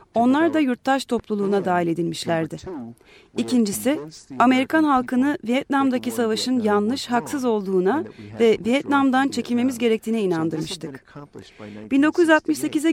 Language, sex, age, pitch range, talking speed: Turkish, female, 30-49, 180-265 Hz, 95 wpm